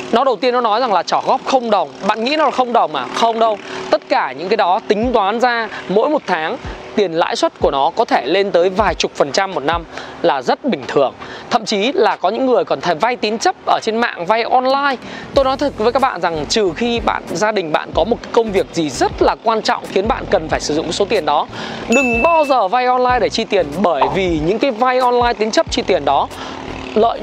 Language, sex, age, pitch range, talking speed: Vietnamese, male, 20-39, 195-255 Hz, 260 wpm